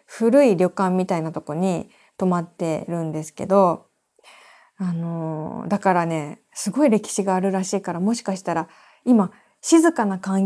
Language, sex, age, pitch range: Japanese, female, 20-39, 175-240 Hz